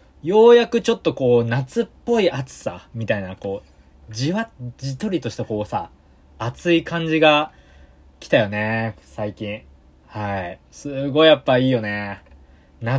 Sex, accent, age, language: male, native, 20-39, Japanese